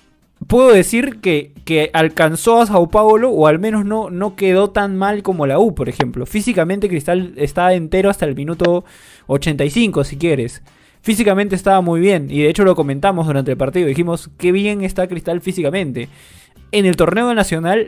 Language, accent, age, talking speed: Spanish, Argentinian, 20-39, 180 wpm